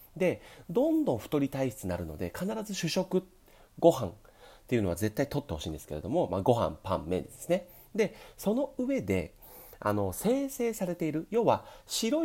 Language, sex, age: Japanese, male, 40-59